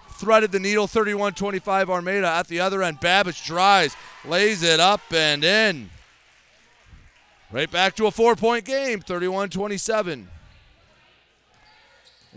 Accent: American